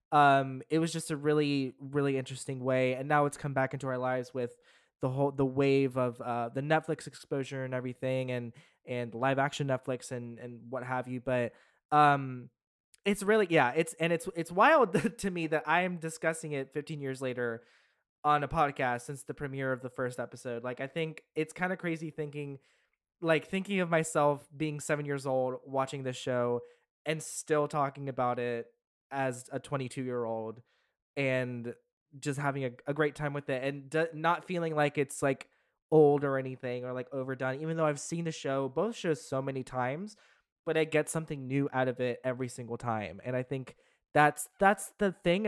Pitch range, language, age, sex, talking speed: 130-155 Hz, English, 20-39, male, 195 wpm